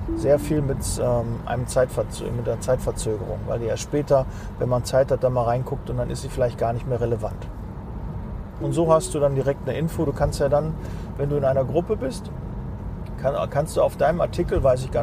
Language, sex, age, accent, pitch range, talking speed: German, male, 40-59, German, 120-160 Hz, 215 wpm